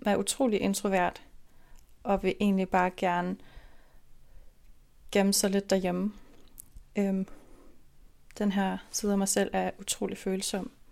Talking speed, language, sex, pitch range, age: 125 wpm, Danish, female, 180-205 Hz, 30-49